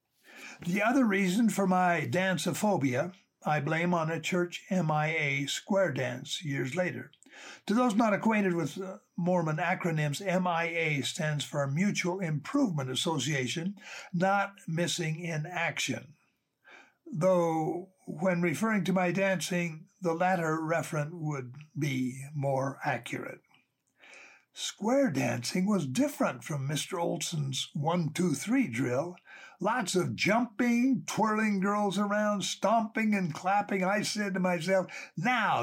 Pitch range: 155-200 Hz